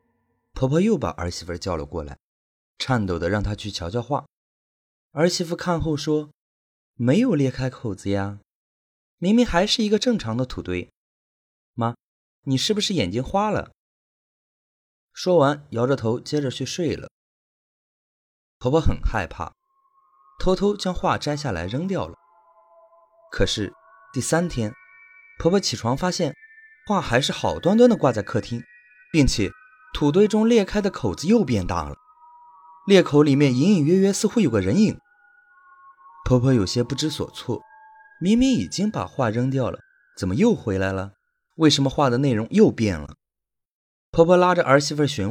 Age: 20-39